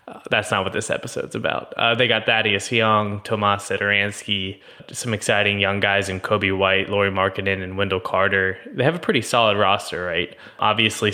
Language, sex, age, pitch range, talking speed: English, male, 20-39, 95-110 Hz, 185 wpm